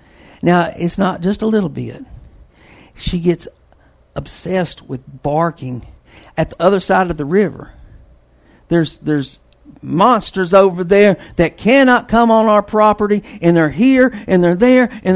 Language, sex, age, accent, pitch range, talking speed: English, male, 60-79, American, 150-225 Hz, 145 wpm